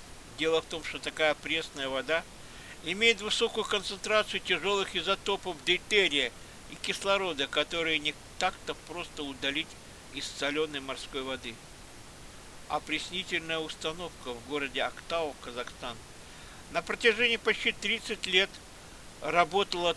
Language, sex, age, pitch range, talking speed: Russian, male, 60-79, 150-185 Hz, 110 wpm